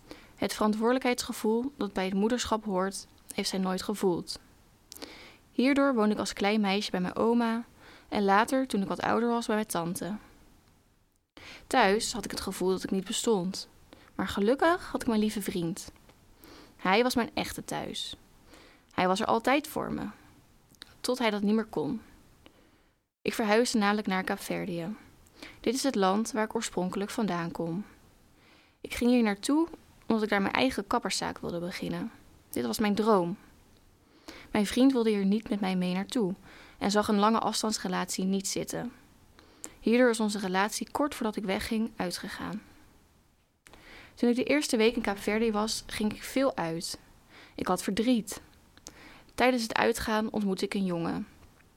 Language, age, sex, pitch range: Dutch, 20-39, female, 195-235 Hz